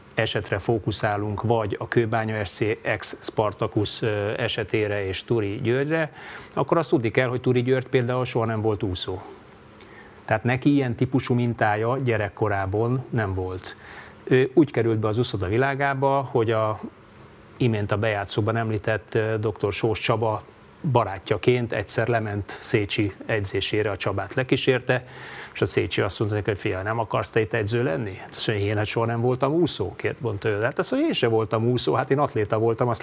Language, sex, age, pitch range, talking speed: Hungarian, male, 30-49, 105-125 Hz, 165 wpm